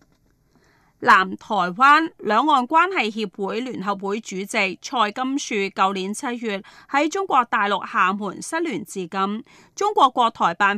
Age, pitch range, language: 30-49, 200-275 Hz, Chinese